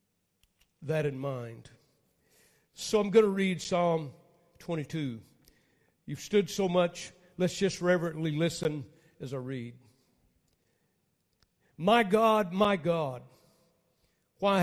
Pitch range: 145-185 Hz